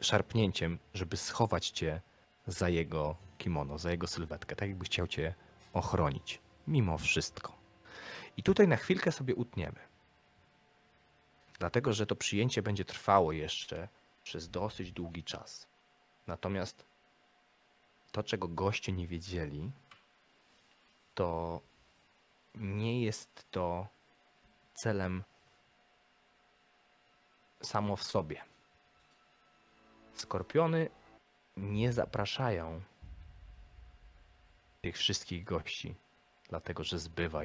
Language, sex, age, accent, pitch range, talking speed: Polish, male, 30-49, native, 80-100 Hz, 90 wpm